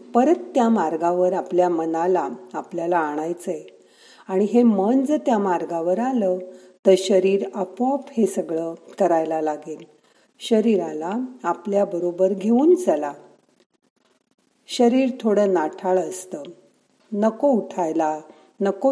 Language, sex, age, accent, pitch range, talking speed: Marathi, female, 50-69, native, 175-220 Hz, 100 wpm